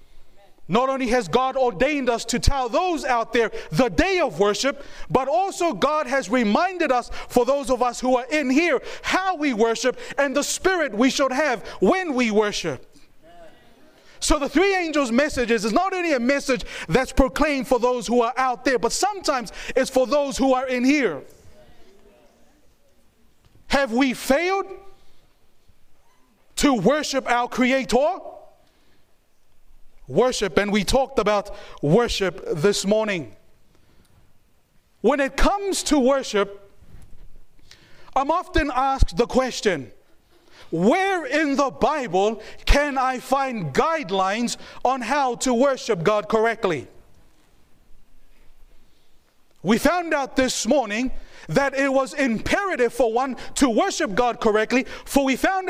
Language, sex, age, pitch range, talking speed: English, male, 30-49, 235-290 Hz, 135 wpm